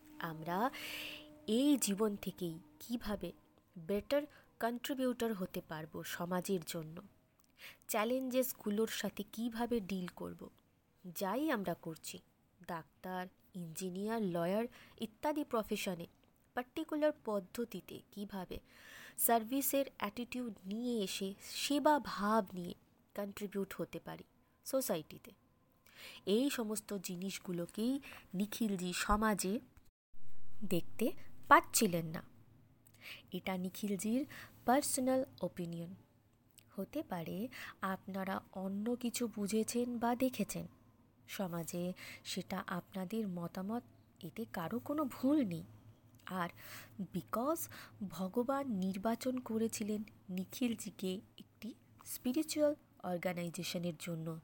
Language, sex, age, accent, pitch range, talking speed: Bengali, female, 20-39, native, 175-240 Hz, 85 wpm